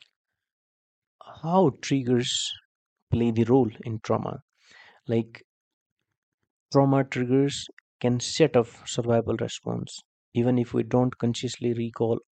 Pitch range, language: 115-125 Hz, English